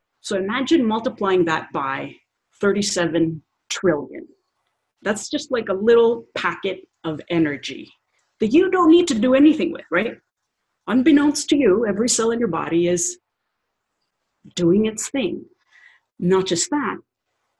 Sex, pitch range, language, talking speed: female, 170-255 Hz, English, 135 wpm